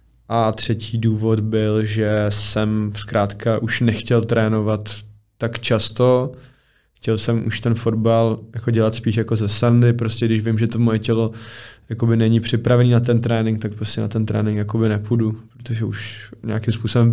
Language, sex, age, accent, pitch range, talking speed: Czech, male, 20-39, native, 110-120 Hz, 160 wpm